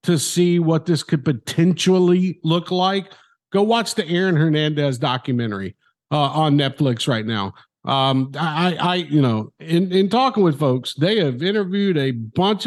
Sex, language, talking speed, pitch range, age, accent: male, English, 160 wpm, 145-185 Hz, 50-69, American